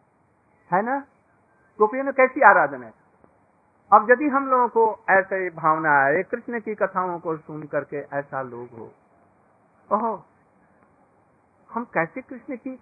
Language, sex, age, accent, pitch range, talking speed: Hindi, male, 50-69, native, 175-230 Hz, 135 wpm